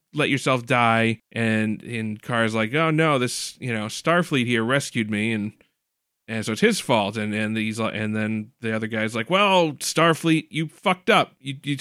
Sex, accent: male, American